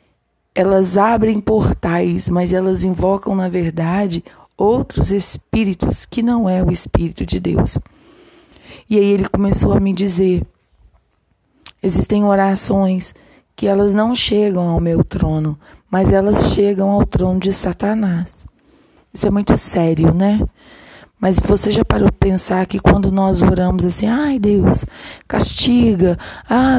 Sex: female